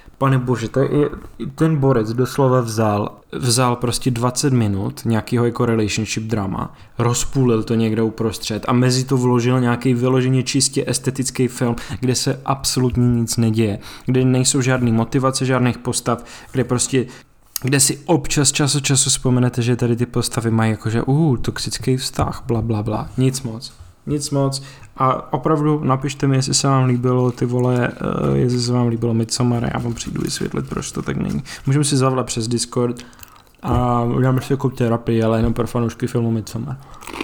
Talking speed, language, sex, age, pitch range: 170 wpm, Czech, male, 20-39, 115-130 Hz